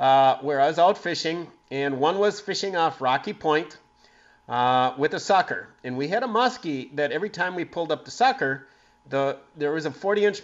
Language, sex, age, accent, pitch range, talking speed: English, male, 50-69, American, 140-195 Hz, 200 wpm